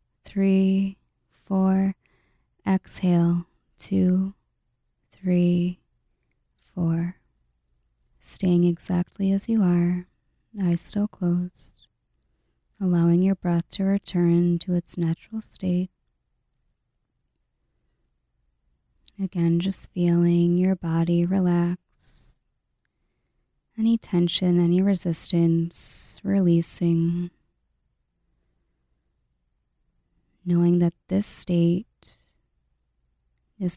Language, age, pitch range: English, 20-39, 160-180 Hz